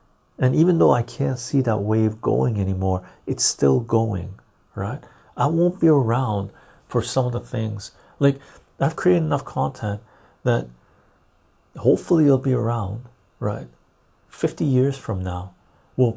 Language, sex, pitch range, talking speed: English, male, 100-130 Hz, 150 wpm